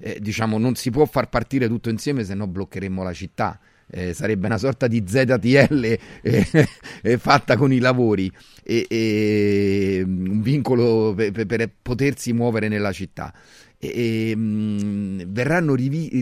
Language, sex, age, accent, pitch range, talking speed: Italian, male, 40-59, native, 100-120 Hz, 145 wpm